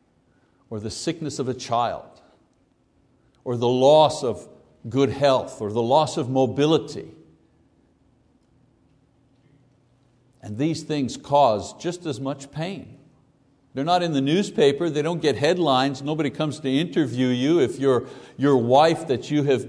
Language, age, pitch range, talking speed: English, 60-79, 120-150 Hz, 140 wpm